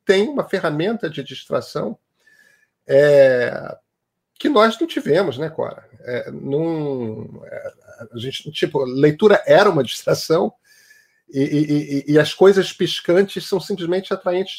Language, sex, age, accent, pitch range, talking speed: Portuguese, male, 40-59, Brazilian, 145-190 Hz, 100 wpm